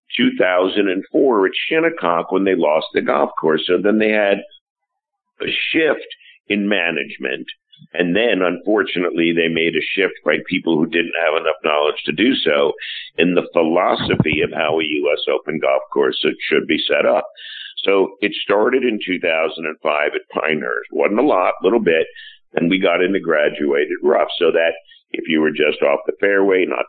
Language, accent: English, American